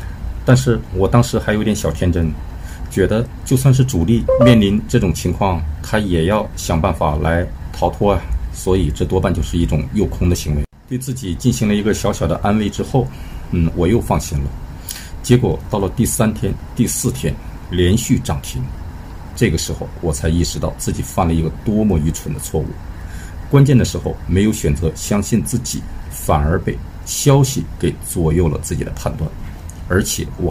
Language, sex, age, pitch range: Chinese, male, 50-69, 80-105 Hz